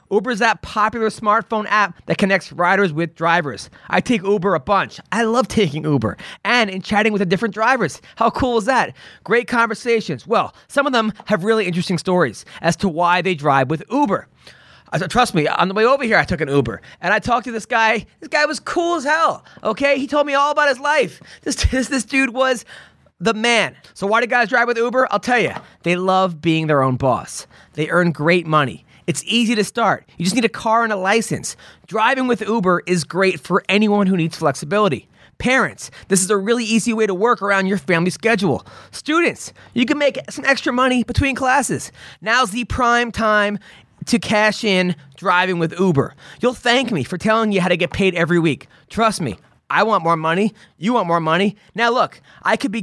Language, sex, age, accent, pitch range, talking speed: English, male, 20-39, American, 175-235 Hz, 215 wpm